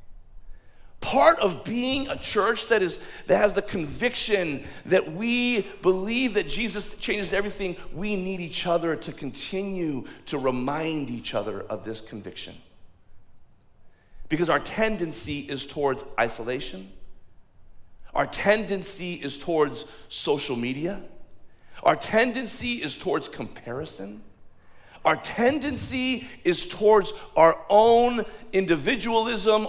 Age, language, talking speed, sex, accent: 40-59, English, 110 wpm, male, American